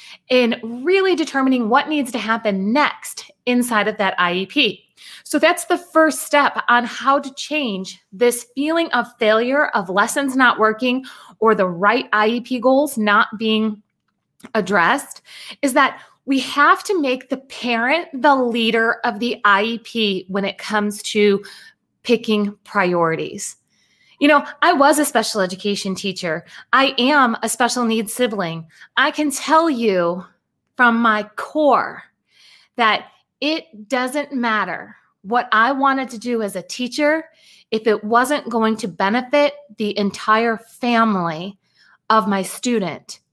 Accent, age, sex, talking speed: American, 30-49, female, 140 wpm